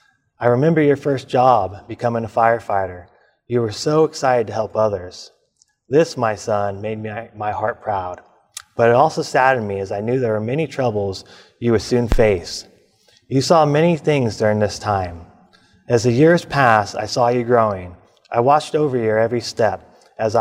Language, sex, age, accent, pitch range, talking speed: English, male, 30-49, American, 110-130 Hz, 175 wpm